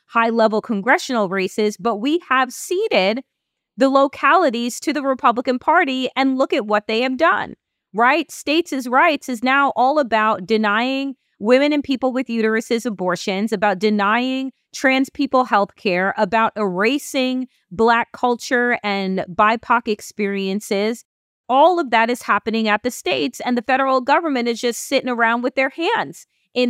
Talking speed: 155 wpm